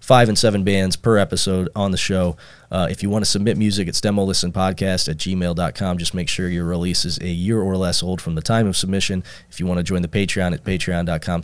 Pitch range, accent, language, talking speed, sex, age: 90-105 Hz, American, English, 235 wpm, male, 30-49